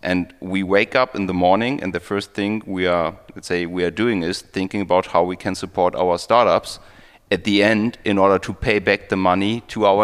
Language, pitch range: German, 95-115 Hz